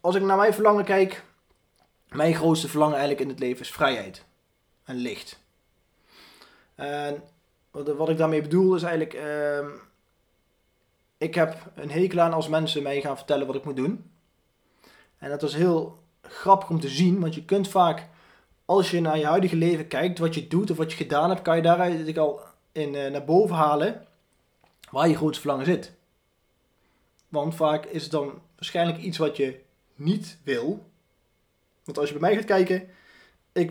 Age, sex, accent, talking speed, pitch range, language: 20-39, male, Dutch, 180 wpm, 145-175 Hz, Dutch